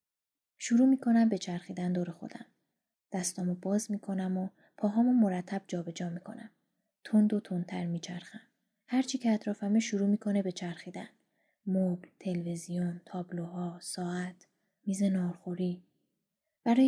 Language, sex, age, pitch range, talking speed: Persian, female, 20-39, 180-225 Hz, 115 wpm